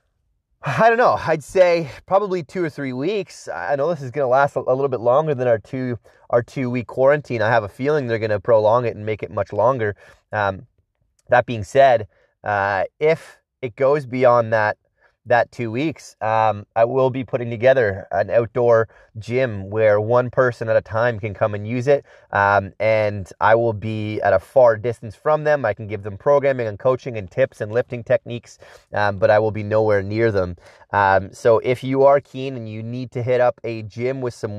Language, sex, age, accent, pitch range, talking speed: English, male, 30-49, American, 100-130 Hz, 210 wpm